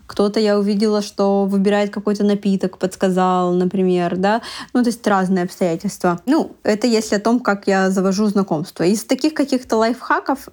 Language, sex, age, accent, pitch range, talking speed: Russian, female, 20-39, native, 200-245 Hz, 160 wpm